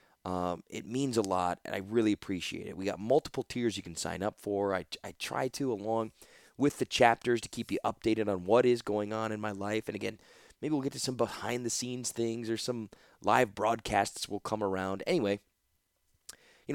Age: 20-39